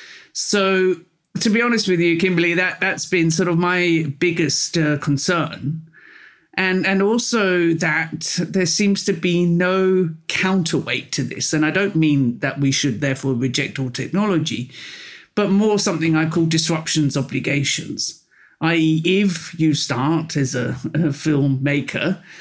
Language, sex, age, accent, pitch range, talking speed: English, male, 40-59, British, 140-180 Hz, 140 wpm